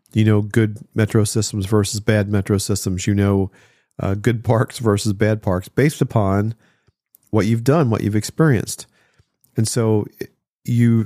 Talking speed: 150 wpm